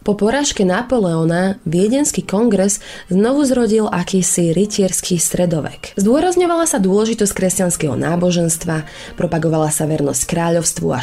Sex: female